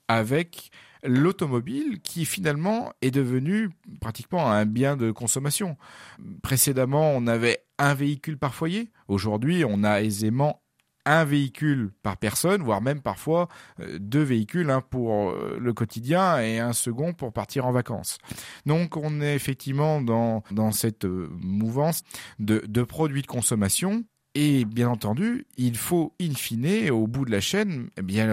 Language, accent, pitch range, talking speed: French, French, 115-155 Hz, 145 wpm